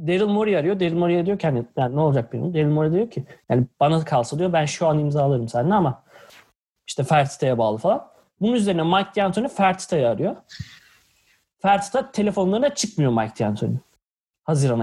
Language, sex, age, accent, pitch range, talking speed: Turkish, male, 30-49, native, 150-195 Hz, 170 wpm